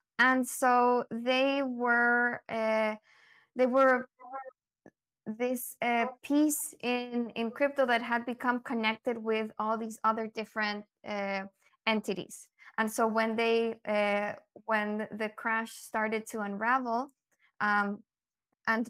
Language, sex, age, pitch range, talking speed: English, female, 20-39, 220-245 Hz, 120 wpm